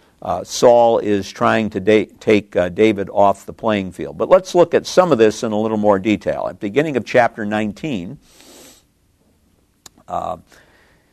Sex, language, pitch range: male, English, 105-135 Hz